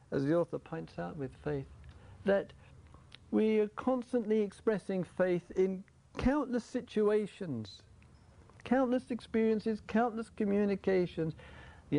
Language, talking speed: English, 105 wpm